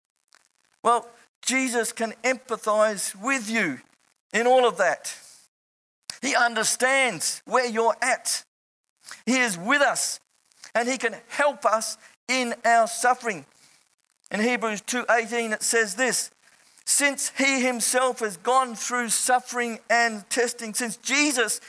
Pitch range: 215-250 Hz